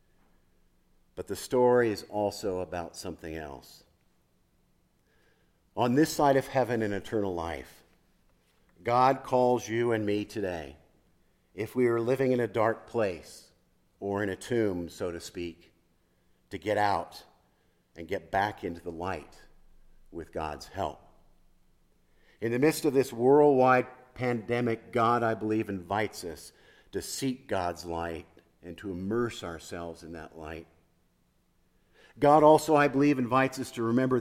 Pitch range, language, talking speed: 90-130 Hz, English, 140 wpm